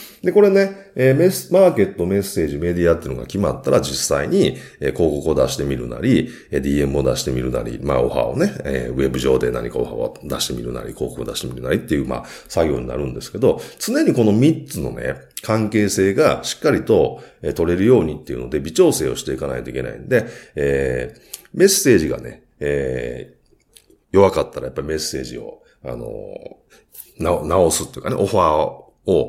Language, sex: Japanese, male